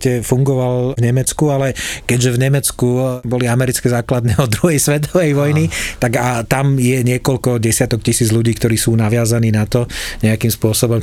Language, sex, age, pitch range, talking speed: Slovak, male, 40-59, 115-130 Hz, 160 wpm